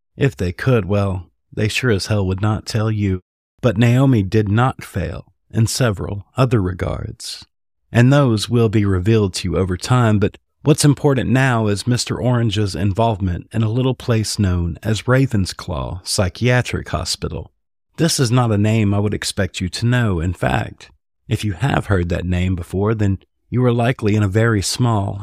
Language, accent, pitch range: English, American, 95-120 Hz